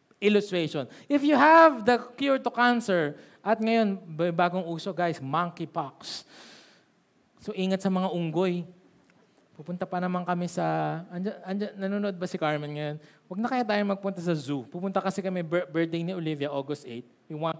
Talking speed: 165 wpm